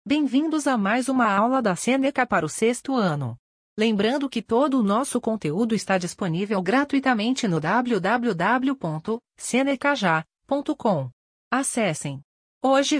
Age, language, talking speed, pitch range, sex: 40-59, Portuguese, 110 wpm, 190-265 Hz, female